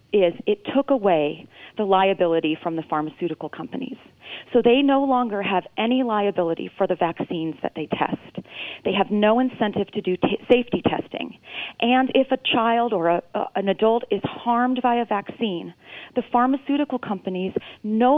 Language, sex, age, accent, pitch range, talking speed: English, female, 30-49, American, 190-240 Hz, 155 wpm